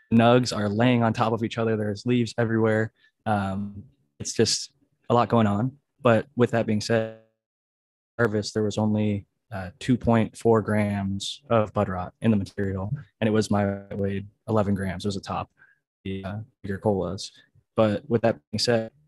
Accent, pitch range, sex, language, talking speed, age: American, 100-115 Hz, male, English, 175 wpm, 20-39